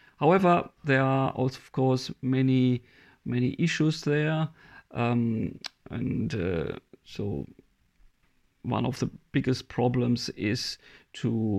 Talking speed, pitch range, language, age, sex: 110 wpm, 120-140 Hz, English, 40-59, male